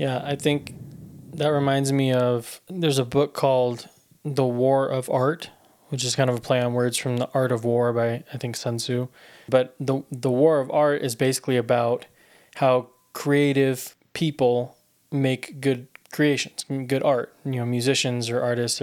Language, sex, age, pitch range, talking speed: English, male, 20-39, 125-140 Hz, 175 wpm